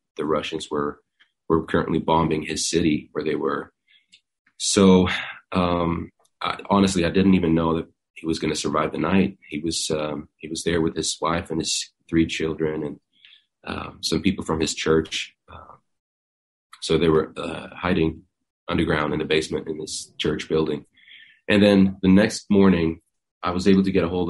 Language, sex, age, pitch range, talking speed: English, male, 30-49, 80-85 Hz, 180 wpm